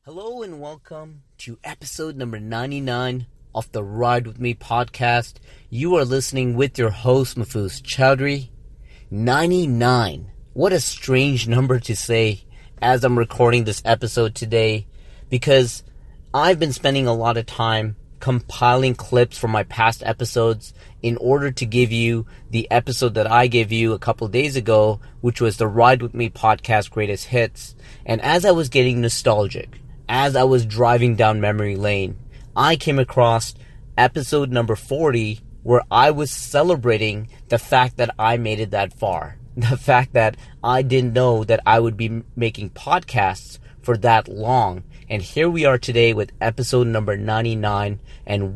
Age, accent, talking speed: 30-49, American, 160 wpm